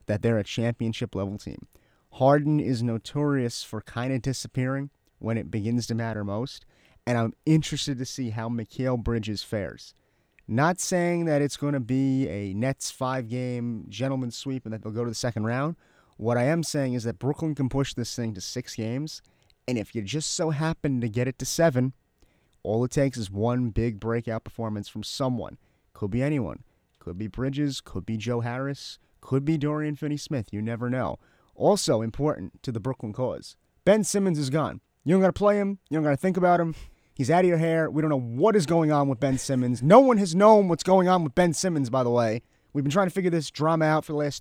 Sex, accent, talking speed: male, American, 220 wpm